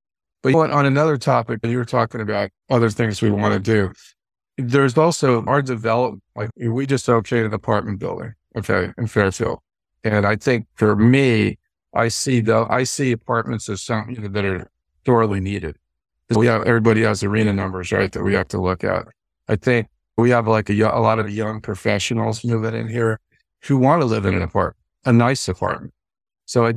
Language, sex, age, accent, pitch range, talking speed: English, male, 50-69, American, 105-120 Hz, 190 wpm